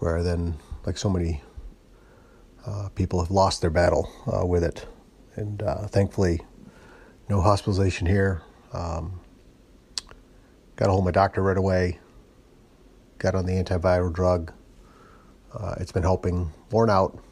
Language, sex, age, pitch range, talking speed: English, male, 30-49, 90-105 Hz, 135 wpm